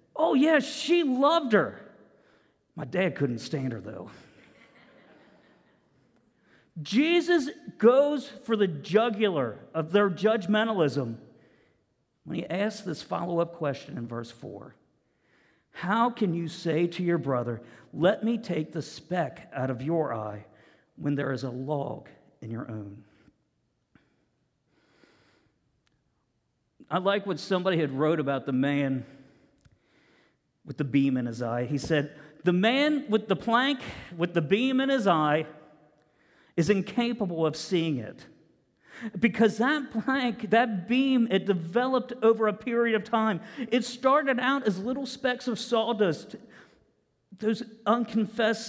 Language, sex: English, male